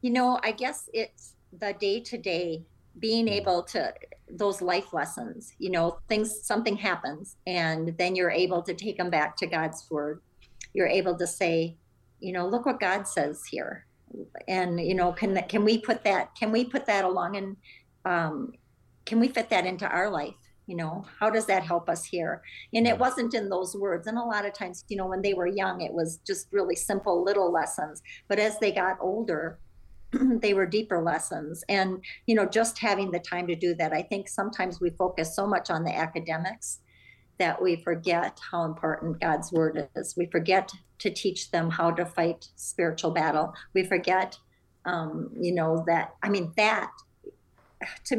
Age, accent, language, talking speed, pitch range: 50-69, American, English, 190 wpm, 170-210 Hz